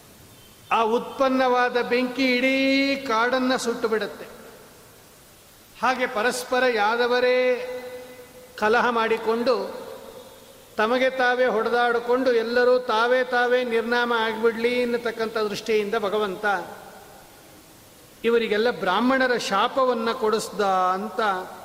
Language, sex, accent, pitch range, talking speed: Kannada, male, native, 210-250 Hz, 80 wpm